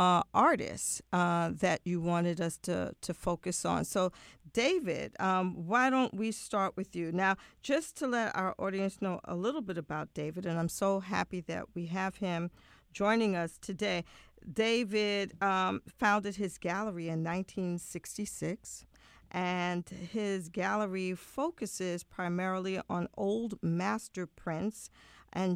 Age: 40-59